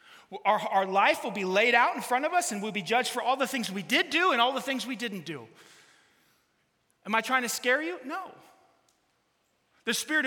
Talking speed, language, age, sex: 220 wpm, English, 30-49, male